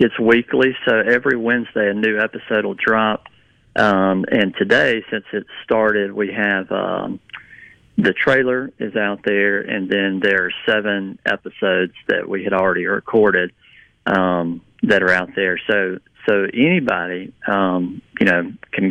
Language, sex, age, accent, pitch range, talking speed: English, male, 40-59, American, 95-115 Hz, 150 wpm